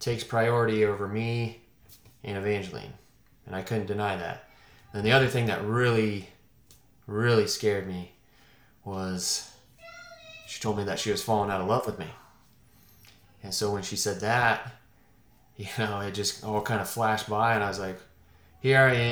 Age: 20-39